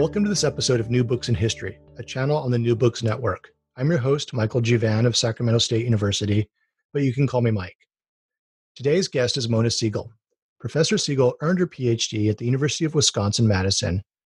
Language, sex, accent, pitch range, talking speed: English, male, American, 110-140 Hz, 195 wpm